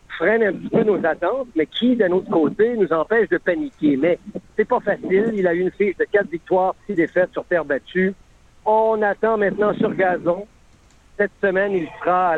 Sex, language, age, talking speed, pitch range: male, French, 60-79, 205 wpm, 165-205 Hz